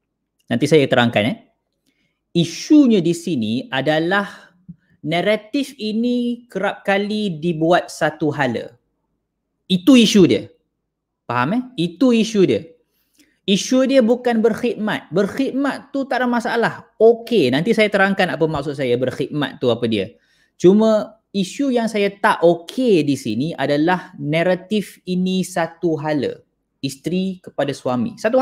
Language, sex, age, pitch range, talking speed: Malay, male, 20-39, 125-200 Hz, 125 wpm